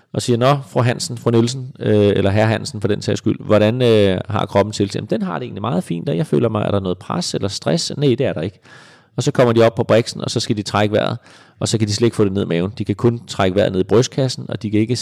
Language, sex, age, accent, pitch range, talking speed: Danish, male, 30-49, native, 105-135 Hz, 300 wpm